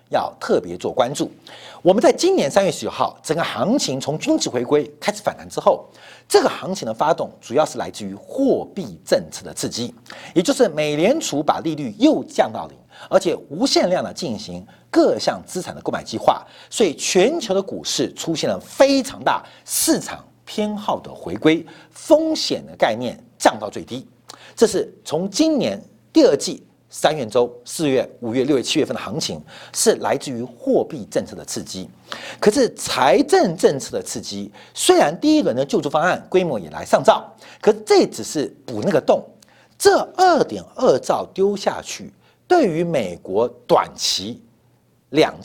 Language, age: Chinese, 50-69